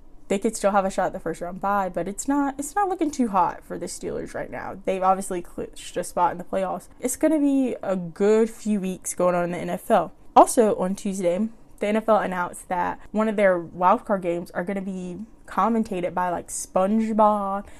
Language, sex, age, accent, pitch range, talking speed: English, female, 10-29, American, 185-215 Hz, 220 wpm